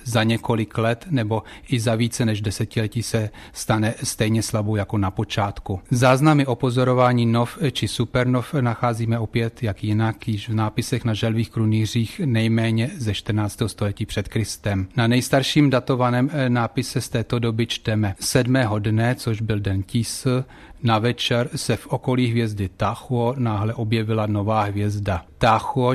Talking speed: 150 wpm